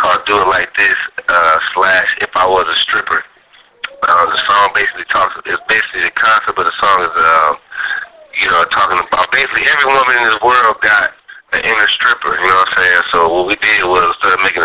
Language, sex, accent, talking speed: English, male, American, 215 wpm